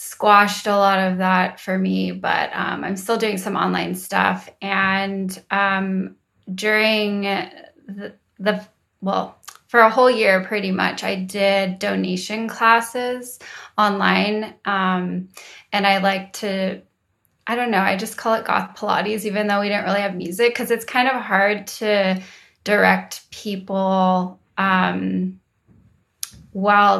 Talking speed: 140 wpm